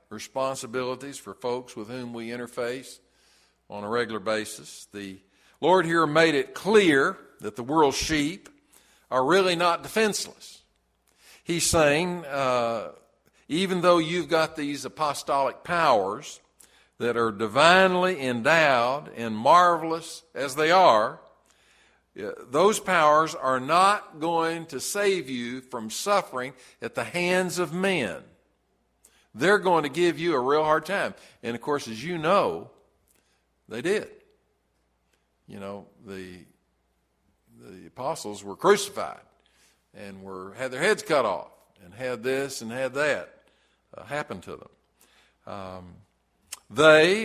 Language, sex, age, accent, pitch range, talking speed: English, male, 50-69, American, 115-175 Hz, 130 wpm